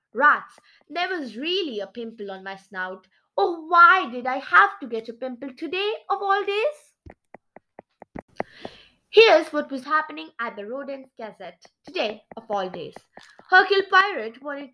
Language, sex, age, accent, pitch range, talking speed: English, female, 20-39, Indian, 220-335 Hz, 150 wpm